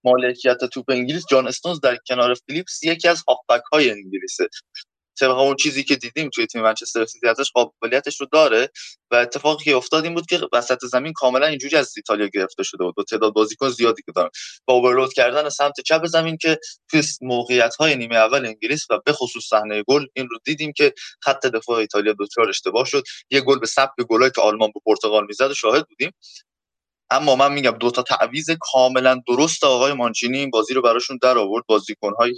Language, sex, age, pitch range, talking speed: Persian, male, 20-39, 115-150 Hz, 185 wpm